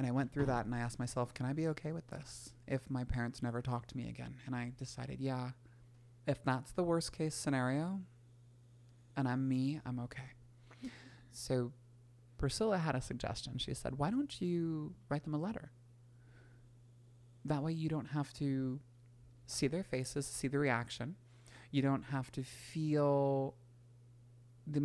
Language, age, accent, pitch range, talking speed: English, 20-39, American, 120-135 Hz, 170 wpm